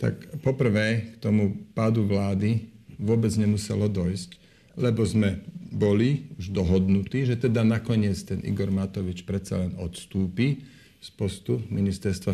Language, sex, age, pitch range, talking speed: Slovak, male, 40-59, 95-110 Hz, 125 wpm